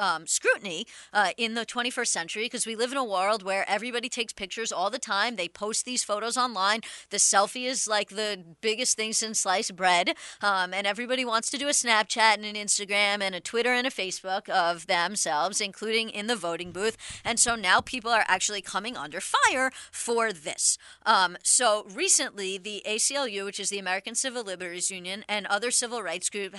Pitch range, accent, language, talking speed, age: 195-235 Hz, American, English, 195 wpm, 30-49